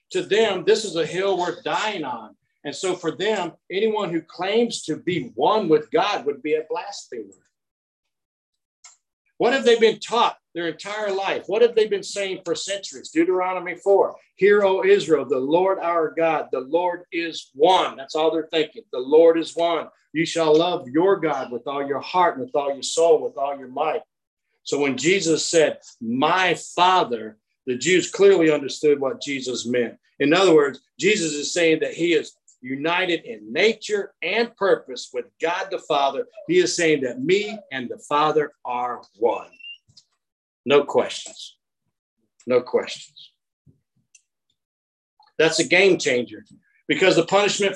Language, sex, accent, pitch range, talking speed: English, male, American, 150-230 Hz, 165 wpm